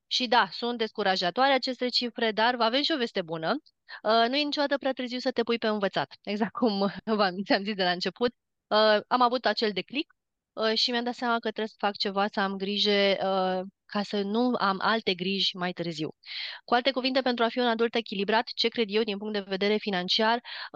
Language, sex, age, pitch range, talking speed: Romanian, female, 30-49, 195-240 Hz, 200 wpm